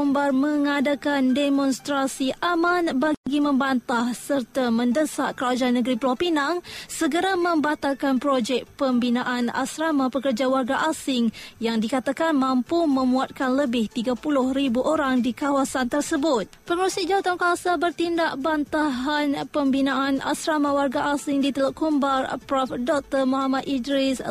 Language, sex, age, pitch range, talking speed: Malay, female, 20-39, 260-295 Hz, 110 wpm